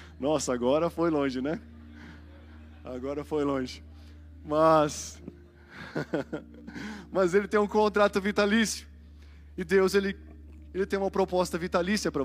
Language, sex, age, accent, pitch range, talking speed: Portuguese, male, 20-39, Brazilian, 125-190 Hz, 120 wpm